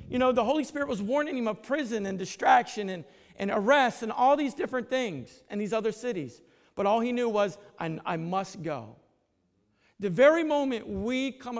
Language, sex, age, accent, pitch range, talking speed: English, male, 50-69, American, 185-245 Hz, 195 wpm